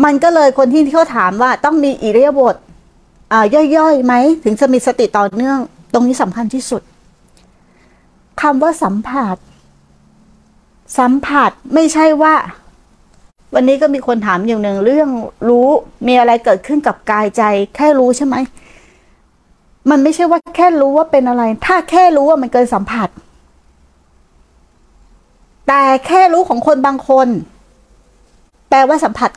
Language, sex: Thai, female